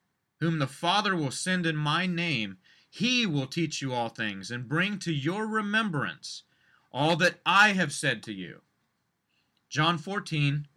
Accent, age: American, 30-49